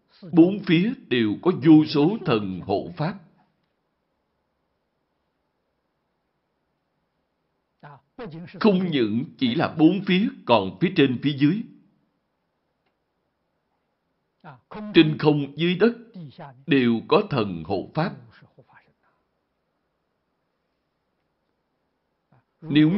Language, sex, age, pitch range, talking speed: Vietnamese, male, 60-79, 135-185 Hz, 80 wpm